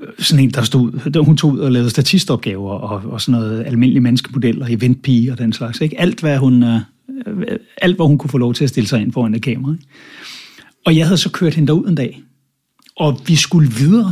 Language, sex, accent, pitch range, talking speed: English, male, Danish, 120-155 Hz, 230 wpm